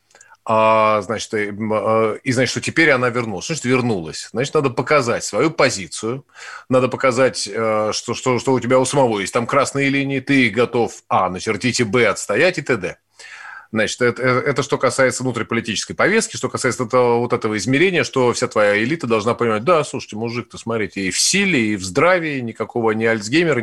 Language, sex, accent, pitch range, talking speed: Russian, male, native, 115-145 Hz, 170 wpm